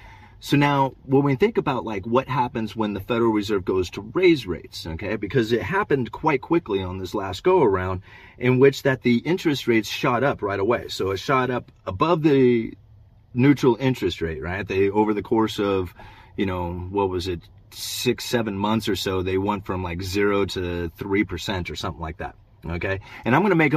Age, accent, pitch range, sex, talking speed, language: 30-49, American, 95-125 Hz, male, 200 wpm, English